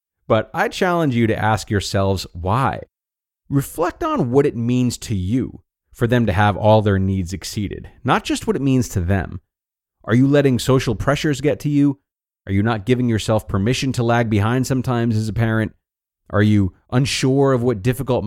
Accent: American